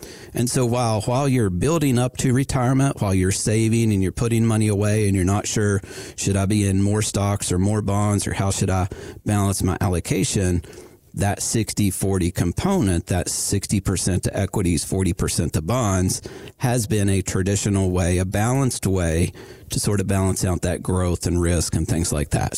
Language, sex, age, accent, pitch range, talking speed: English, male, 50-69, American, 95-115 Hz, 180 wpm